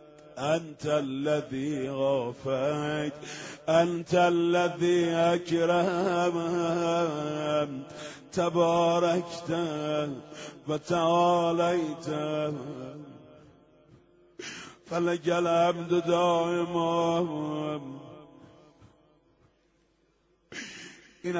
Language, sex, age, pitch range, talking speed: Persian, male, 50-69, 160-175 Hz, 35 wpm